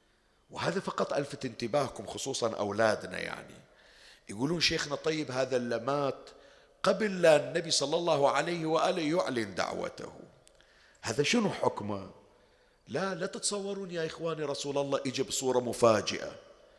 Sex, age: male, 50-69